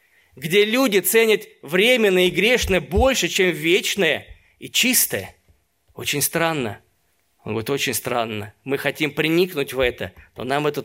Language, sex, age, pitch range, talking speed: Russian, male, 20-39, 125-165 Hz, 140 wpm